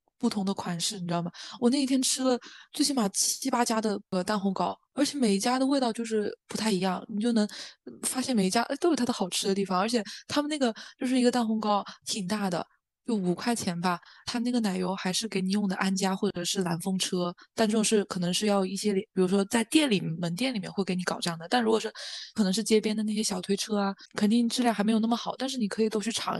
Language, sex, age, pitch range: Chinese, female, 20-39, 190-235 Hz